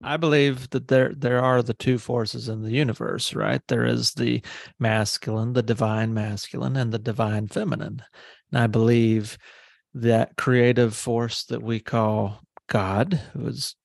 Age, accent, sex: 30-49, American, male